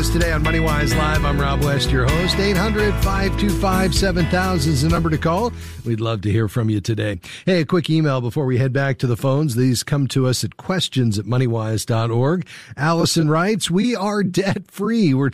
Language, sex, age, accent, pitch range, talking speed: English, male, 50-69, American, 110-140 Hz, 185 wpm